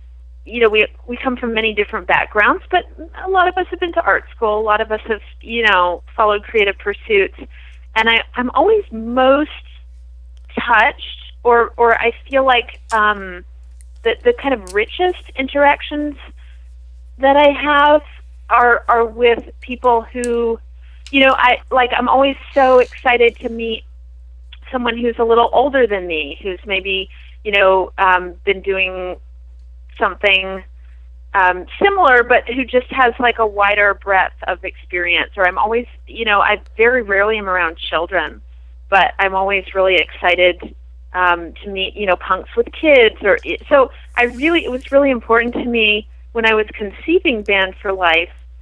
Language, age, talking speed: English, 30-49, 165 wpm